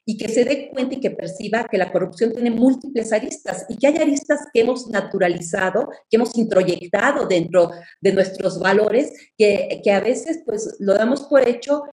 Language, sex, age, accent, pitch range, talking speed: Spanish, female, 40-59, Mexican, 185-255 Hz, 180 wpm